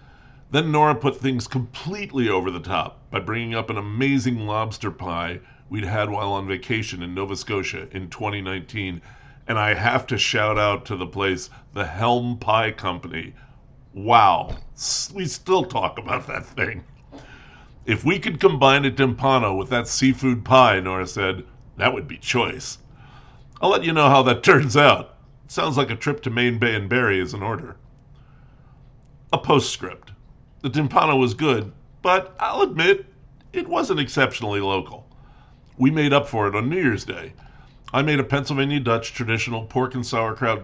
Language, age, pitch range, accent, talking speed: English, 50-69, 110-135 Hz, American, 165 wpm